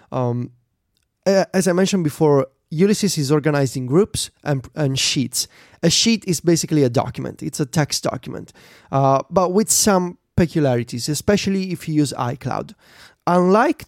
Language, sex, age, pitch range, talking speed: English, male, 30-49, 135-180 Hz, 145 wpm